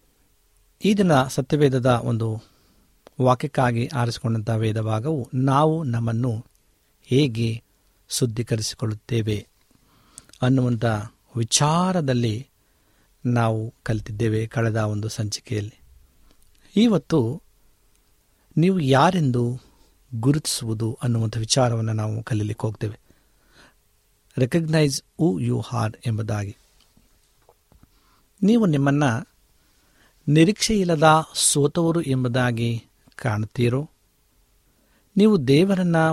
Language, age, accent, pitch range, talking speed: Kannada, 50-69, native, 110-145 Hz, 65 wpm